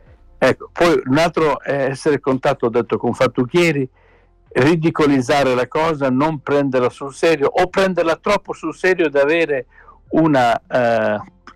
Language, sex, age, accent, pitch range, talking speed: Italian, male, 60-79, native, 125-160 Hz, 140 wpm